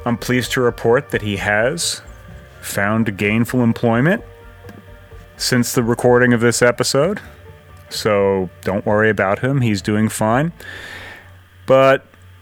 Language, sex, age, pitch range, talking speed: English, male, 30-49, 95-120 Hz, 120 wpm